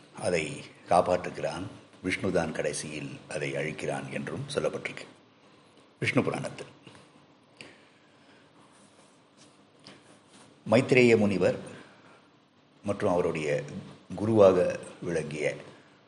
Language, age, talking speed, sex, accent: Tamil, 50-69, 60 wpm, male, native